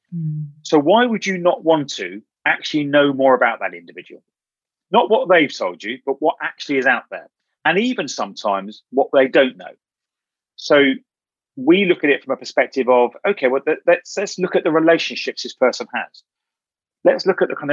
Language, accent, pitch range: English, British, 125-180 Hz